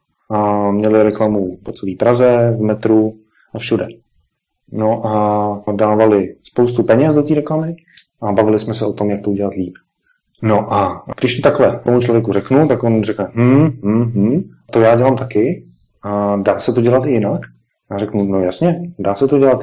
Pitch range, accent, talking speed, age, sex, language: 105-120 Hz, native, 185 wpm, 30-49, male, Czech